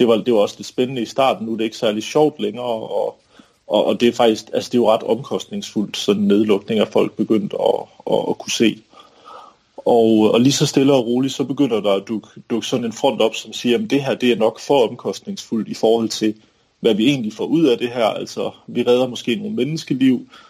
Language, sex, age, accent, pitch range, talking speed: Danish, male, 30-49, native, 110-125 Hz, 240 wpm